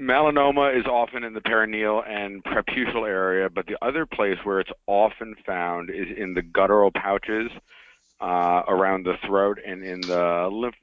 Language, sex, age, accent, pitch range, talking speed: English, male, 50-69, American, 90-105 Hz, 165 wpm